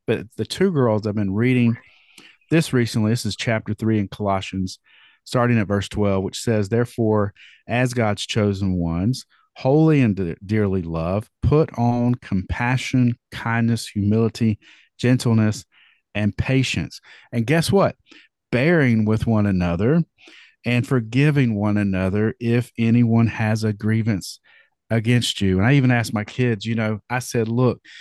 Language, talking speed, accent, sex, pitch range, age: English, 145 wpm, American, male, 105-125 Hz, 50-69